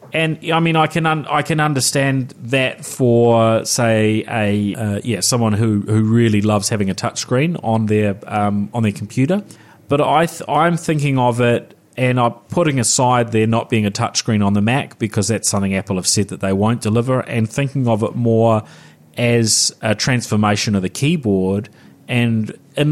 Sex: male